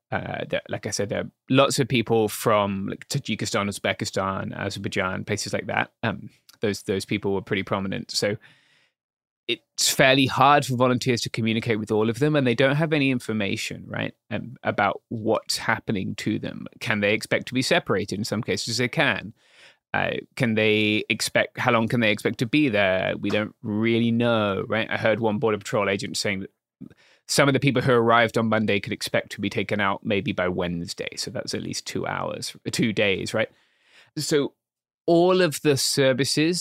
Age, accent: 20-39, British